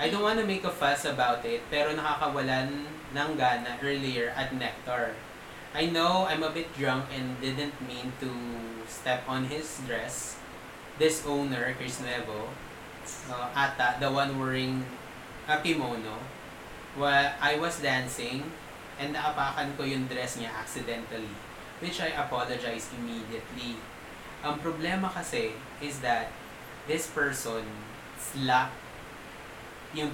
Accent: Filipino